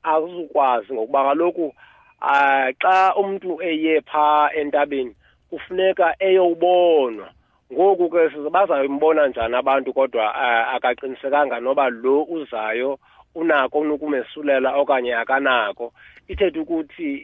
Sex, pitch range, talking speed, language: male, 125-175 Hz, 95 wpm, English